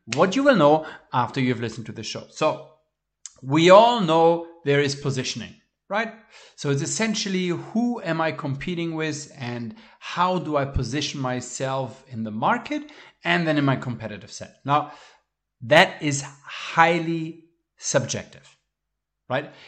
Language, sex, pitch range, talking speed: English, male, 130-180 Hz, 145 wpm